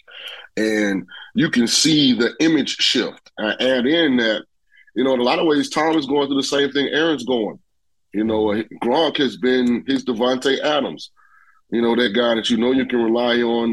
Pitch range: 110-125 Hz